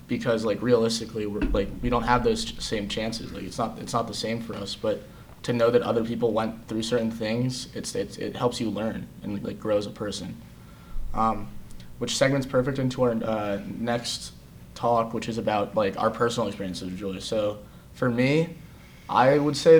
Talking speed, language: 200 wpm, English